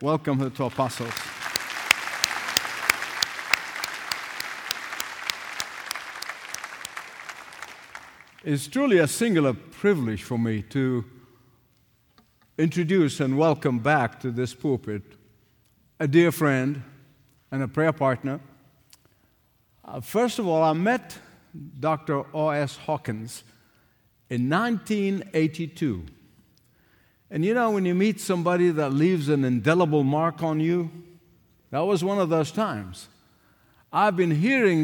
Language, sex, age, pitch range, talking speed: English, male, 60-79, 130-170 Hz, 100 wpm